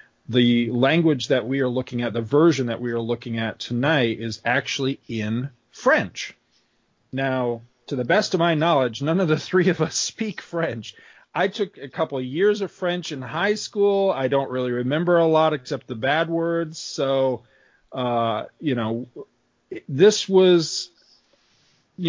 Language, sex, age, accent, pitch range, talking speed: English, male, 40-59, American, 120-160 Hz, 170 wpm